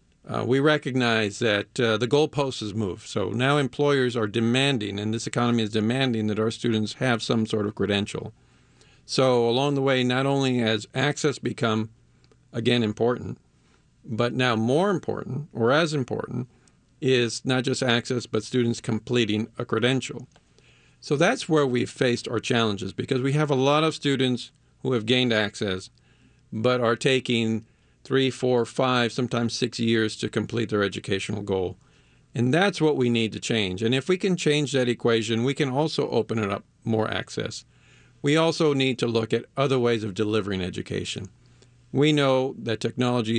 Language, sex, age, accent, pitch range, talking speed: English, male, 50-69, American, 110-130 Hz, 170 wpm